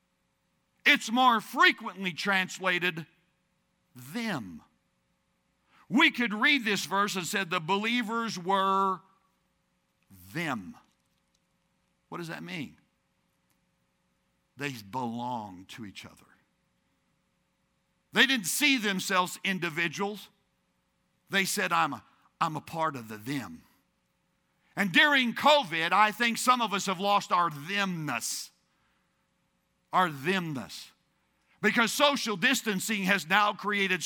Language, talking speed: English, 105 wpm